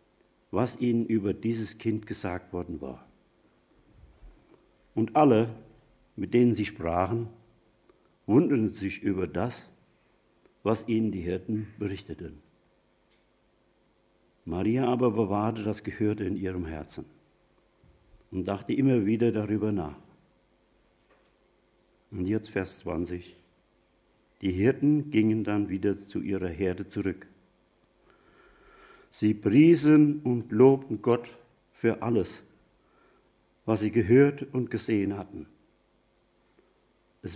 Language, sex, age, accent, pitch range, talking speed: German, male, 60-79, German, 95-120 Hz, 105 wpm